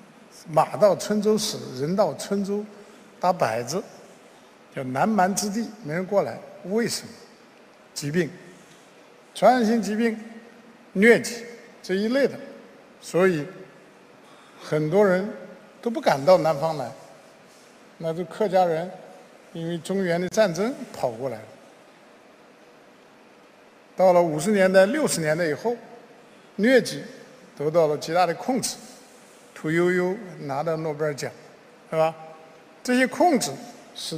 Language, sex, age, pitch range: Chinese, male, 60-79, 170-215 Hz